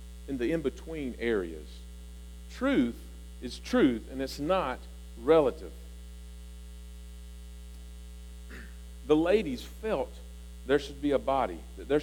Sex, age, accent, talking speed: male, 50-69, American, 105 wpm